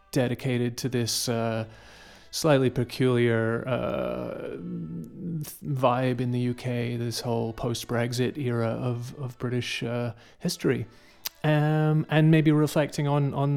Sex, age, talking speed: male, 30-49, 115 wpm